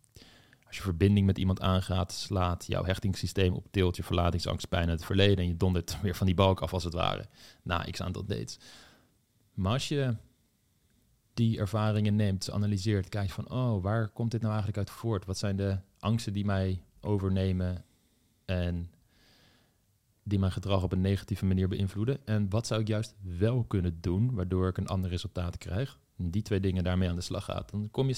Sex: male